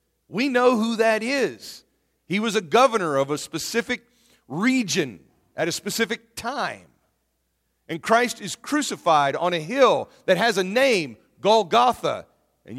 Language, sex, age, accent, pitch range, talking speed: English, male, 40-59, American, 150-215 Hz, 140 wpm